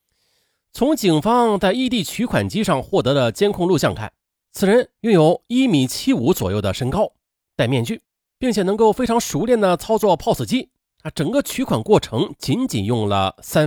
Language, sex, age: Chinese, male, 30-49